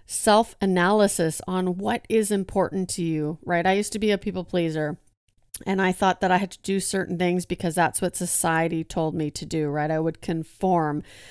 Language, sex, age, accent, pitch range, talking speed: English, female, 40-59, American, 170-205 Hz, 195 wpm